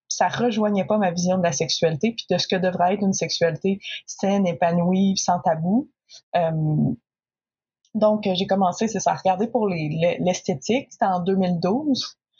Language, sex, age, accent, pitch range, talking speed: French, female, 20-39, Canadian, 175-210 Hz, 170 wpm